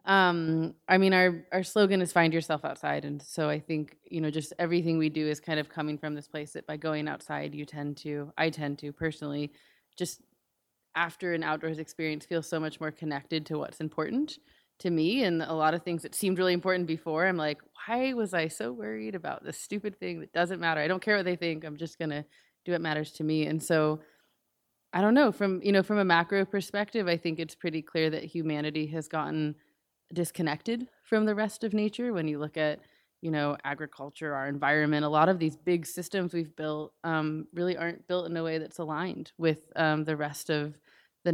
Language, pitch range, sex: English, 150-175 Hz, female